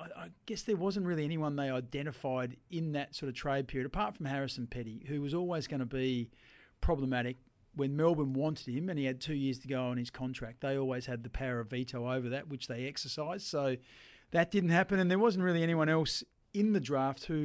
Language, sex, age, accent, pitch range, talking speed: English, male, 40-59, Australian, 125-155 Hz, 225 wpm